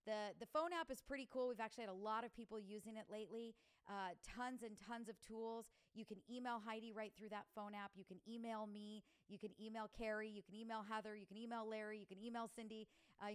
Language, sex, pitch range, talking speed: English, female, 195-220 Hz, 240 wpm